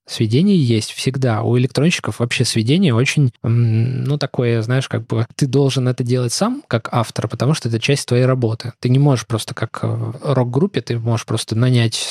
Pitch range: 115-135 Hz